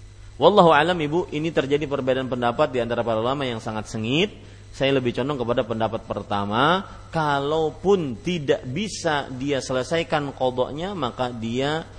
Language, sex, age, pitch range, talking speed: Malay, male, 30-49, 110-155 Hz, 140 wpm